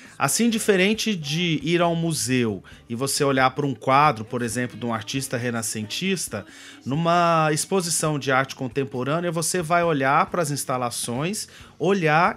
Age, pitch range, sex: 30-49, 130-175 Hz, male